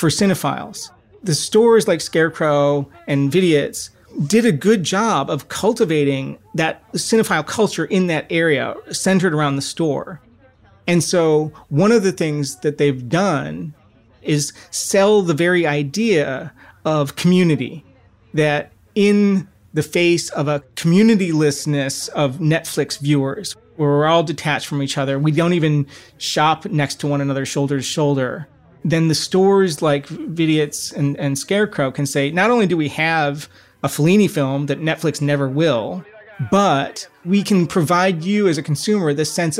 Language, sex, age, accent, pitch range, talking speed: English, male, 30-49, American, 140-175 Hz, 150 wpm